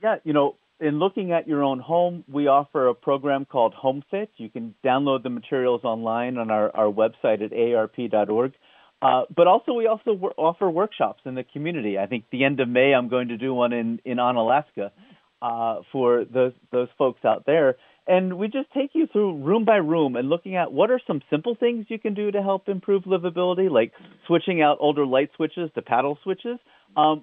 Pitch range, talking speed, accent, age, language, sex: 125-170 Hz, 205 wpm, American, 40-59, English, male